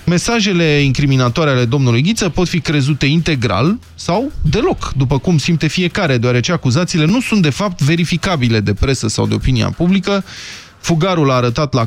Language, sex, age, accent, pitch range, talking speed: Romanian, male, 20-39, native, 125-170 Hz, 160 wpm